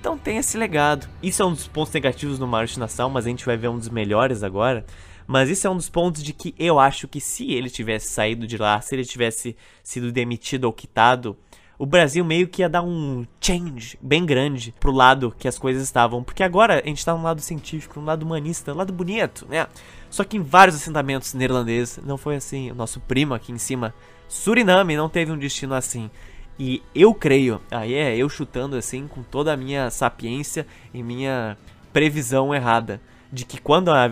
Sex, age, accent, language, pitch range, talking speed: male, 20-39, Brazilian, Portuguese, 120-155 Hz, 210 wpm